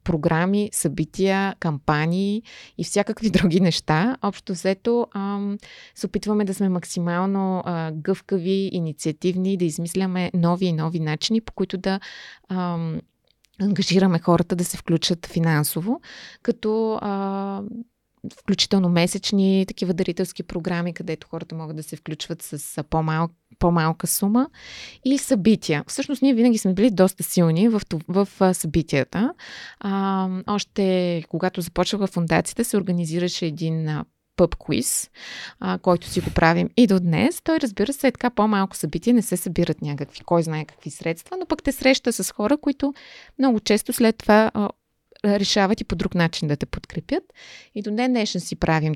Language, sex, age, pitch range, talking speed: Bulgarian, female, 20-39, 165-215 Hz, 145 wpm